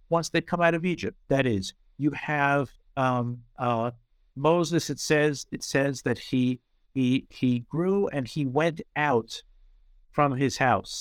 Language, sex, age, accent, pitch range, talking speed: English, male, 50-69, American, 115-140 Hz, 160 wpm